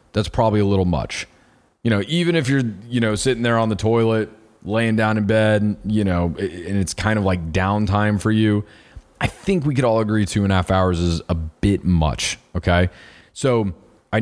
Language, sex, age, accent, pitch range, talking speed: English, male, 30-49, American, 90-110 Hz, 205 wpm